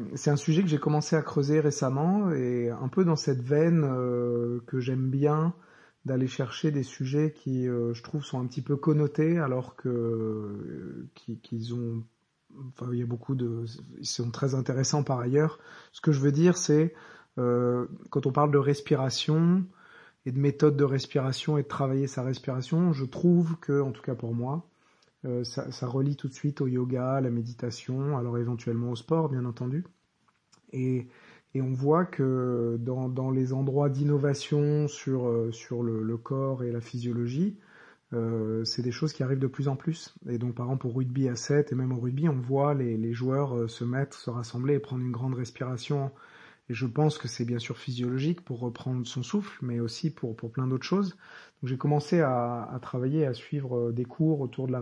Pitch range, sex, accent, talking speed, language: 125-150 Hz, male, French, 195 wpm, French